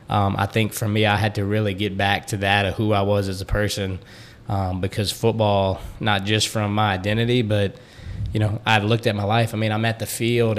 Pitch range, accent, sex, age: 100-110 Hz, American, male, 20-39